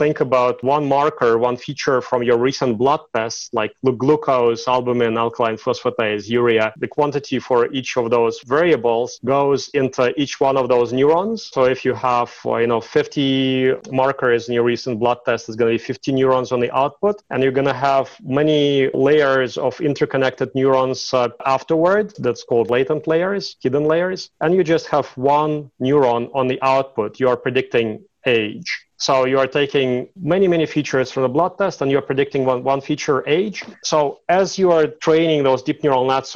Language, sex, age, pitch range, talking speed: English, male, 30-49, 125-145 Hz, 185 wpm